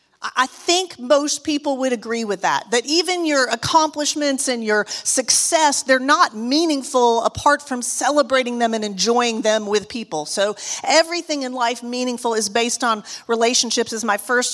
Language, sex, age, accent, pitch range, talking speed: English, female, 40-59, American, 235-305 Hz, 160 wpm